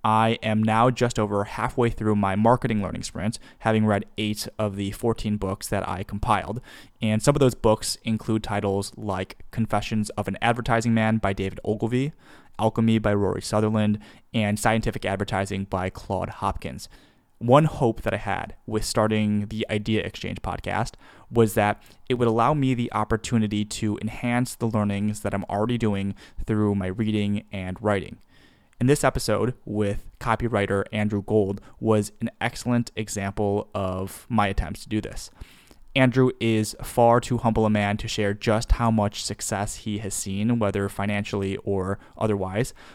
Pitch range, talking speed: 100-115 Hz, 160 wpm